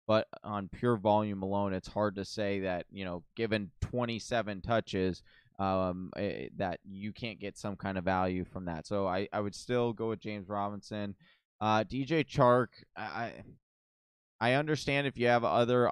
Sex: male